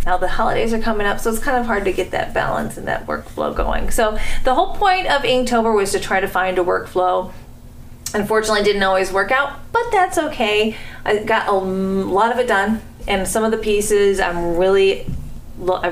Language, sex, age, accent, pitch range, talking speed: English, female, 30-49, American, 180-225 Hz, 210 wpm